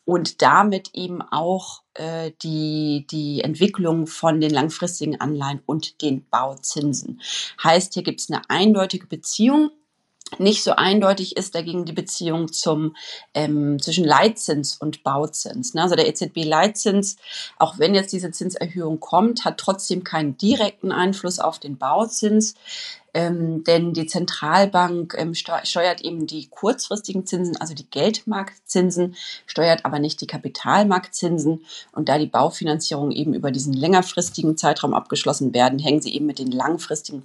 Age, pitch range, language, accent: 30-49, 155-190 Hz, German, German